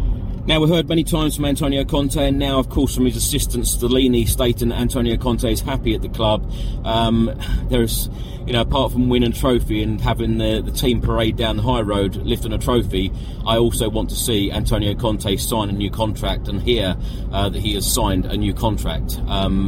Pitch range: 105-125 Hz